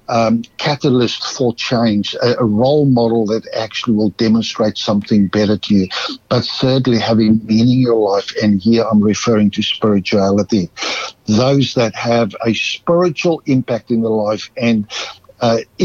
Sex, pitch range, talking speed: male, 110-125 Hz, 150 wpm